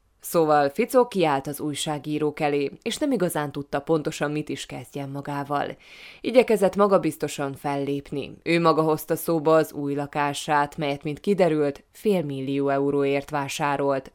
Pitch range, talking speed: 145-175 Hz, 130 wpm